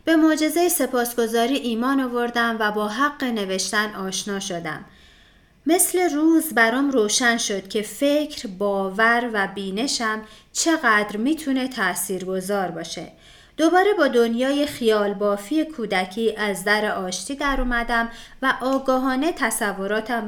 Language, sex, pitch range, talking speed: Persian, female, 200-260 Hz, 115 wpm